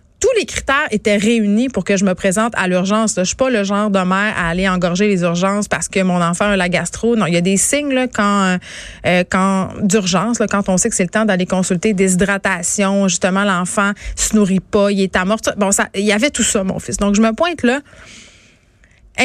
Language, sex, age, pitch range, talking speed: French, female, 30-49, 195-245 Hz, 245 wpm